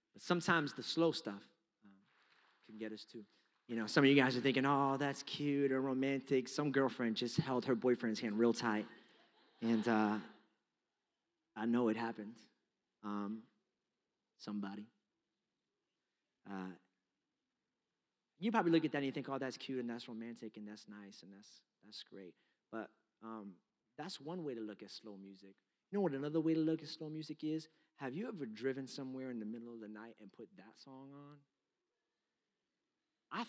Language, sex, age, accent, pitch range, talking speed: English, male, 30-49, American, 110-140 Hz, 175 wpm